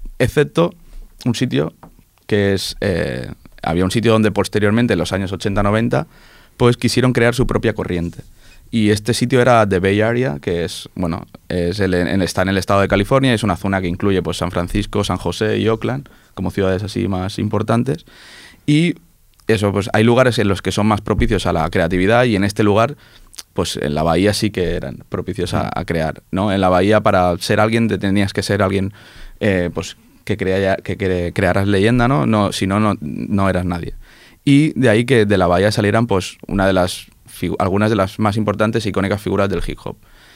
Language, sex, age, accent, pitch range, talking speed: Spanish, male, 20-39, Spanish, 95-115 Hz, 200 wpm